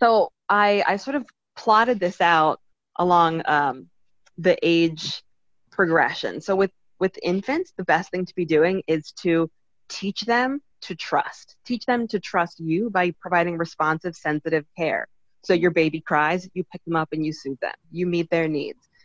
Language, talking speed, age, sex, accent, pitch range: English, 175 wpm, 20-39, female, American, 160-200 Hz